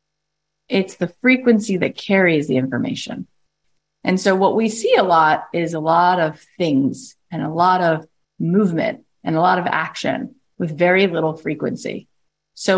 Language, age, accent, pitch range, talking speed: English, 30-49, American, 160-205 Hz, 160 wpm